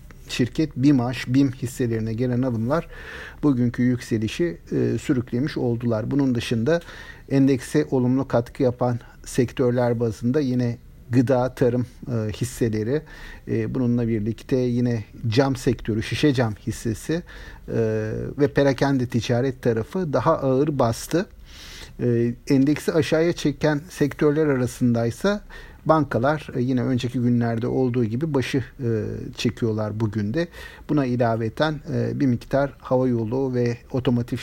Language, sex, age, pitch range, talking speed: Turkish, male, 50-69, 120-145 Hz, 105 wpm